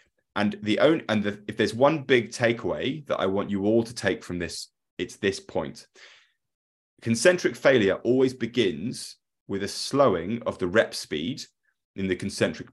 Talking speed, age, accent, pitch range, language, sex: 170 wpm, 30-49, British, 95-120 Hz, English, male